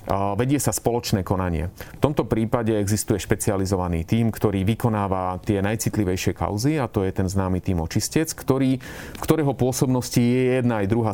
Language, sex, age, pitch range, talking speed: Slovak, male, 30-49, 95-115 Hz, 160 wpm